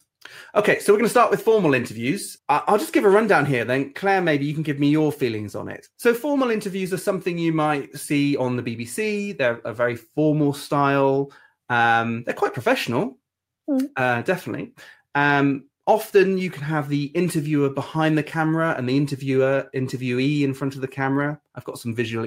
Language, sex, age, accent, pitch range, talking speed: English, male, 30-49, British, 115-150 Hz, 190 wpm